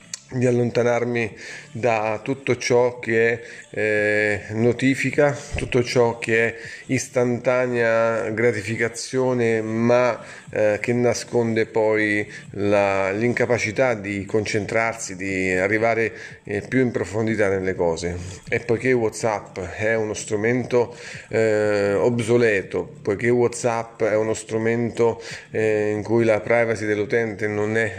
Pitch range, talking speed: 105-125 Hz, 110 wpm